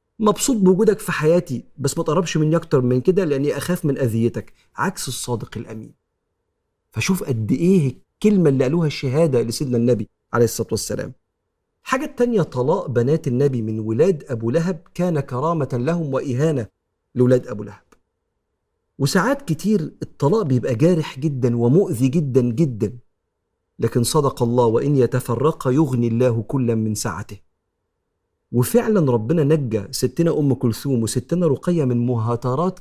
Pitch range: 120-160 Hz